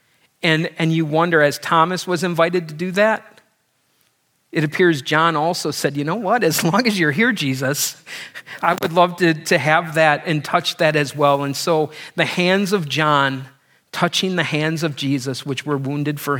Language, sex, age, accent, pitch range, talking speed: English, male, 40-59, American, 140-170 Hz, 190 wpm